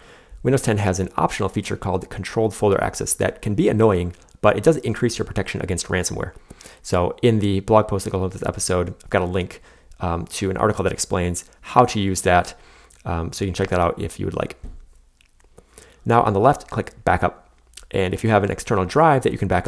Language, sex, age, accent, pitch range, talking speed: English, male, 30-49, American, 90-105 Hz, 225 wpm